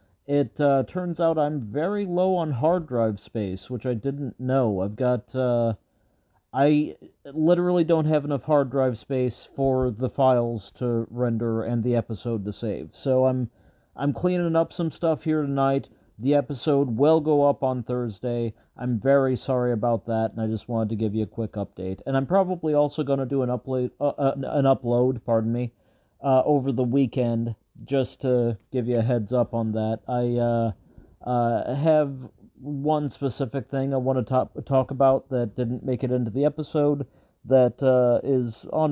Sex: male